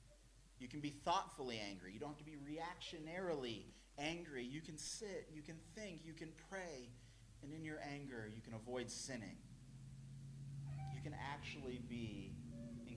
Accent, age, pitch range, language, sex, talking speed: American, 30-49, 115-150 Hz, English, male, 155 wpm